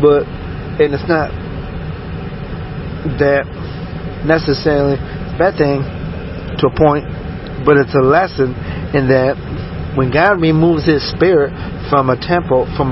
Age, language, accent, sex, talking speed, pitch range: 40-59, English, American, male, 125 wpm, 130-150 Hz